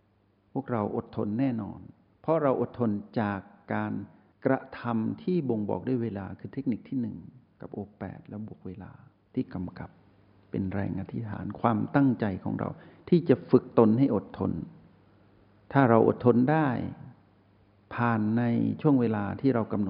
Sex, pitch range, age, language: male, 100-120 Hz, 60-79, Thai